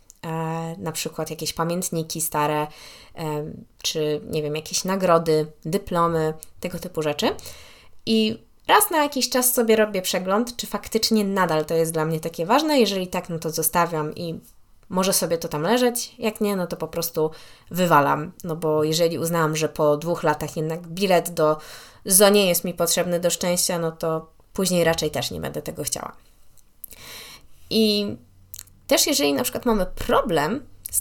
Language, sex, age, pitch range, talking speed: Polish, female, 20-39, 160-200 Hz, 160 wpm